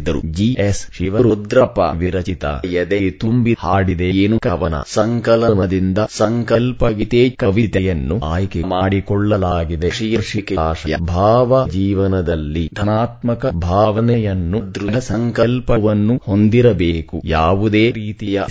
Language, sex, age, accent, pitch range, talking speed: English, male, 30-49, Indian, 90-110 Hz, 110 wpm